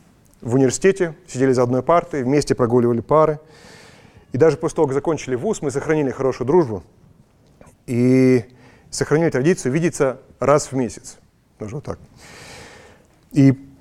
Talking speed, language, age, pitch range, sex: 135 wpm, Russian, 30-49, 120-155 Hz, male